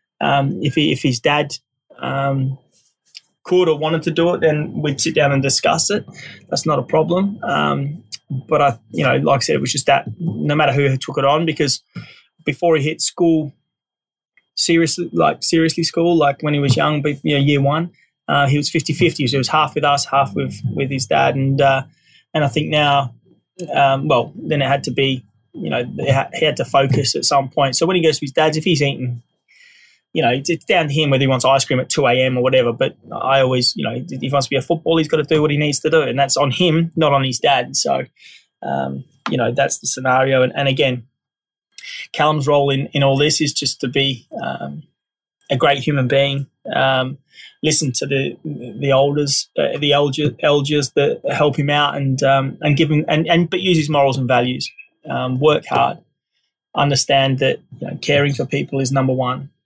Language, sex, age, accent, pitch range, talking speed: English, male, 20-39, Australian, 135-155 Hz, 220 wpm